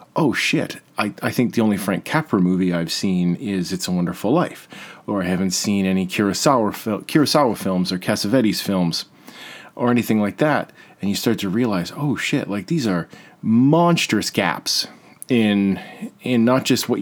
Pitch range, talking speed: 95-125 Hz, 175 wpm